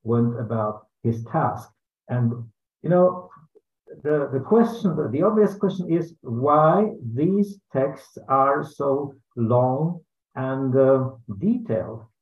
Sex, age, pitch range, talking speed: male, 50-69, 120-160 Hz, 115 wpm